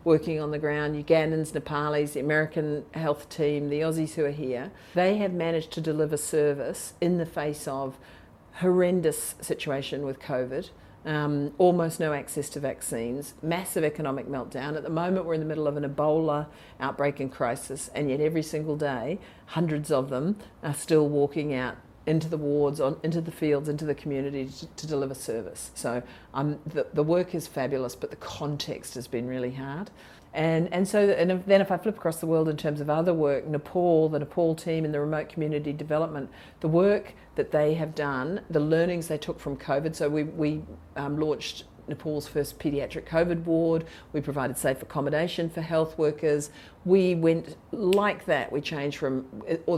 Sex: female